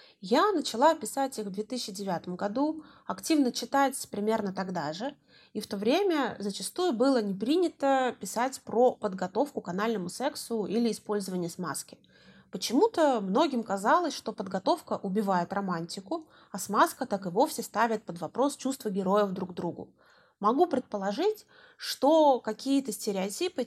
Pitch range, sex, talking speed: 200-275 Hz, female, 135 wpm